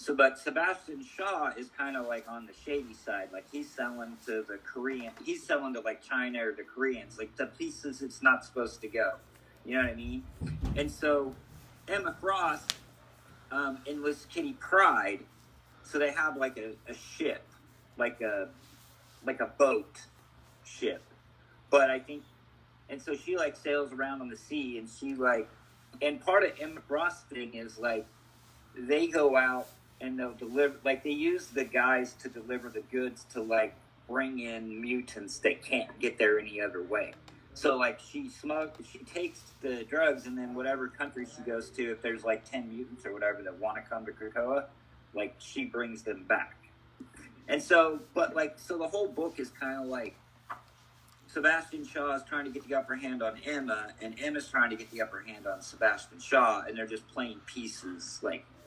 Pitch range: 115-145 Hz